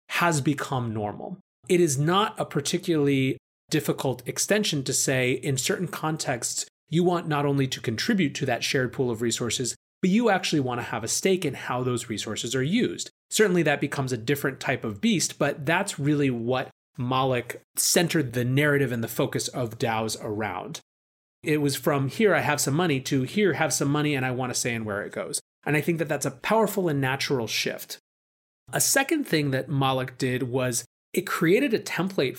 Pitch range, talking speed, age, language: 115-150 Hz, 195 wpm, 30-49, English